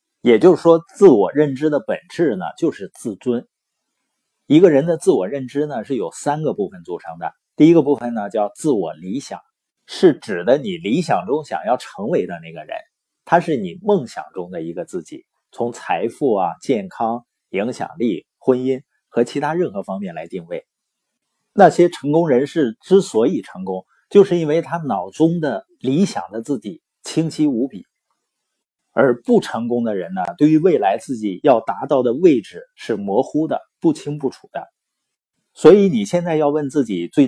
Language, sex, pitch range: Chinese, male, 120-185 Hz